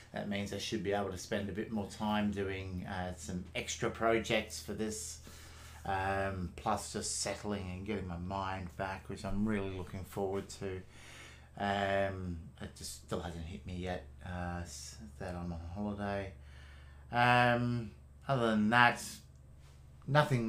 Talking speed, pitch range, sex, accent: 150 wpm, 95-120 Hz, male, Australian